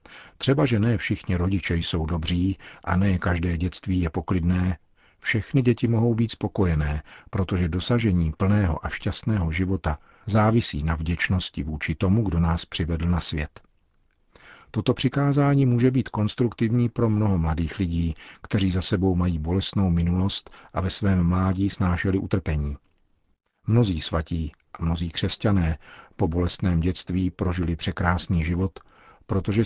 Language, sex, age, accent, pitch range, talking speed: Czech, male, 50-69, native, 85-105 Hz, 135 wpm